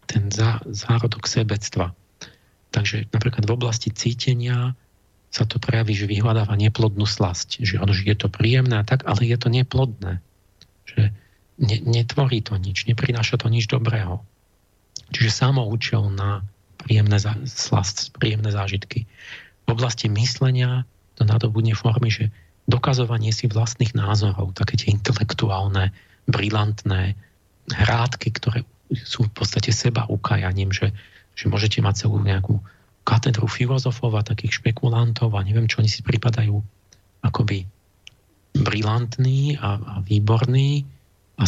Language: Slovak